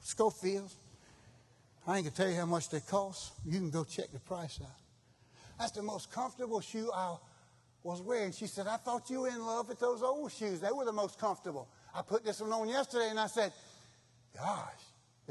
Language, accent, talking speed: English, American, 210 wpm